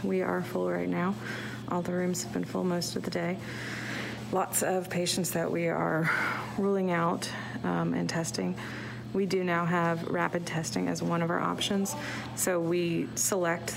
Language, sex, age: English, female, 40-59